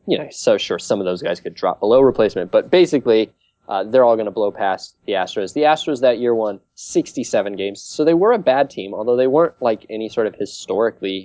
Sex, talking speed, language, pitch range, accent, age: male, 235 wpm, English, 105-155 Hz, American, 20-39